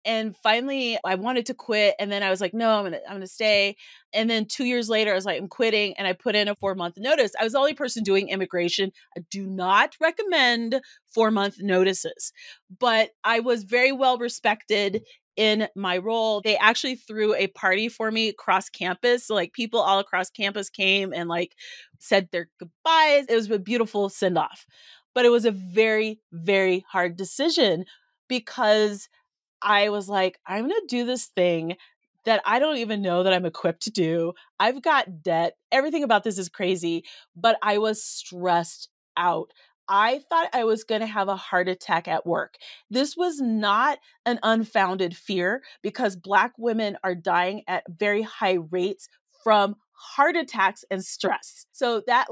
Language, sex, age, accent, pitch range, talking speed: English, female, 30-49, American, 195-255 Hz, 185 wpm